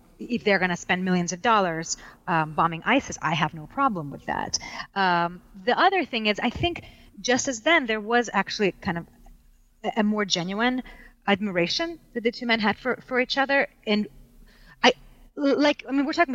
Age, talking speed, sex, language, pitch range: 30-49, 190 wpm, female, English, 180-240 Hz